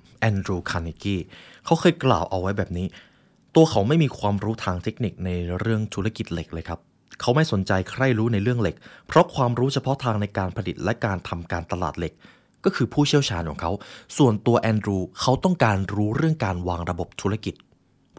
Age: 20-39